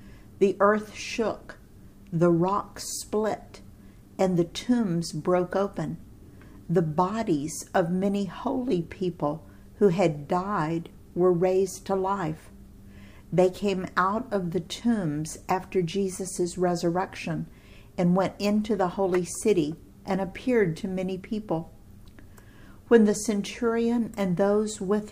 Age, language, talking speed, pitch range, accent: 50-69, English, 120 wpm, 155-205 Hz, American